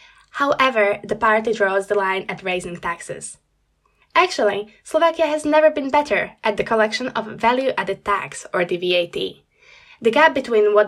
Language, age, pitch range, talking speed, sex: Slovak, 10-29, 205-265 Hz, 155 wpm, female